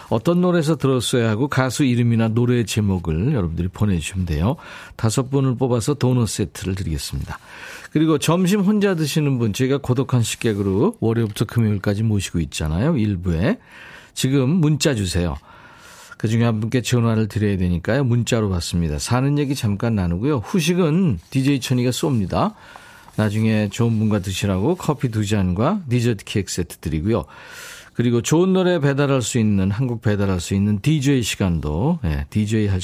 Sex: male